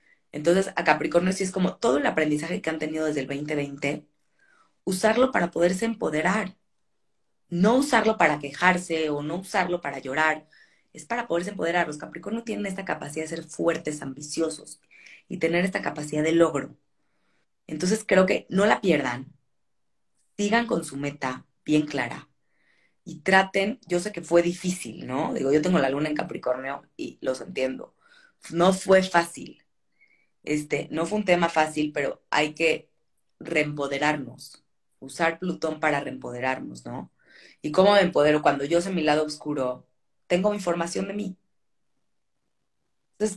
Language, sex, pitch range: Spanish, female, 150-190 Hz